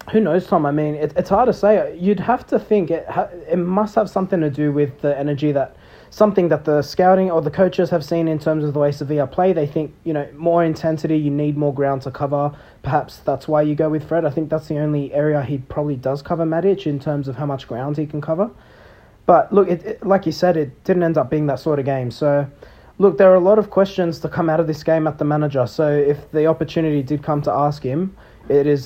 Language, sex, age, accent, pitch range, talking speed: English, male, 30-49, Australian, 145-175 Hz, 260 wpm